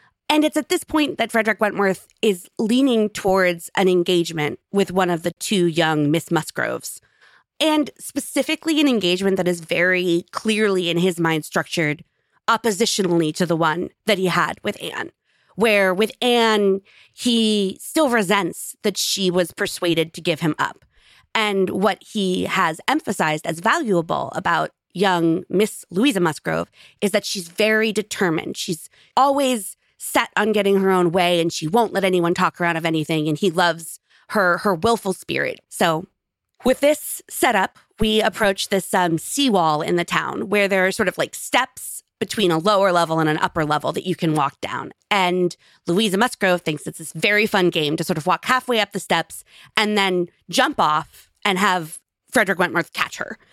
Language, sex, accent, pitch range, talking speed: English, female, American, 170-215 Hz, 175 wpm